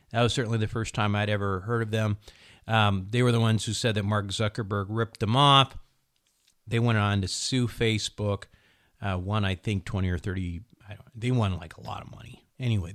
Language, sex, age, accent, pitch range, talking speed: English, male, 30-49, American, 95-115 Hz, 220 wpm